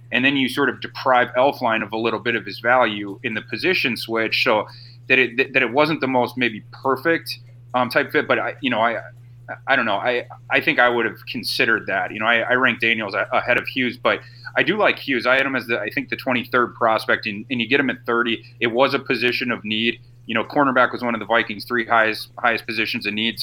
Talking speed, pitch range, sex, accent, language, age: 250 wpm, 115-130 Hz, male, American, English, 30-49